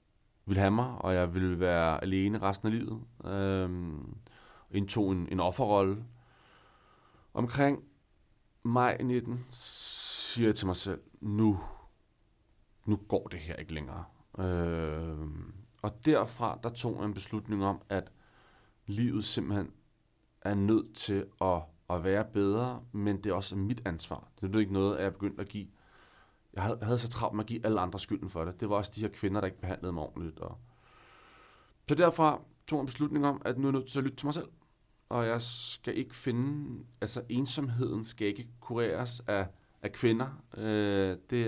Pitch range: 100-120 Hz